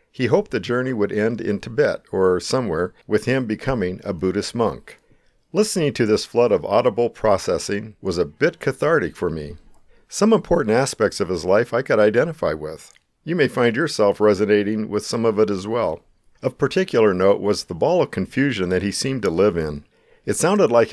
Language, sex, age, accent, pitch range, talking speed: English, male, 50-69, American, 100-135 Hz, 190 wpm